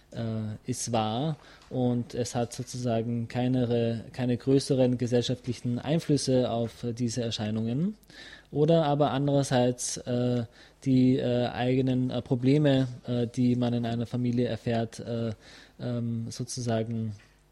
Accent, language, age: German, English, 20-39